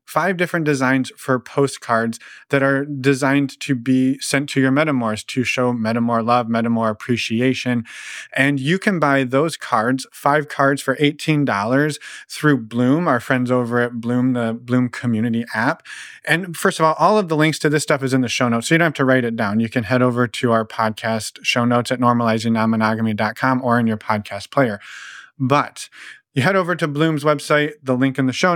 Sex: male